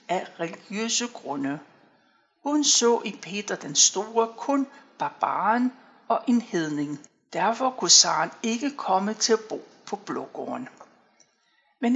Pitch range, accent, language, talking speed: 195-245 Hz, native, Danish, 125 wpm